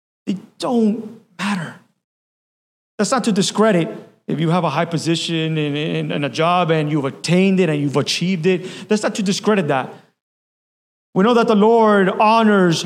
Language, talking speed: English, 175 wpm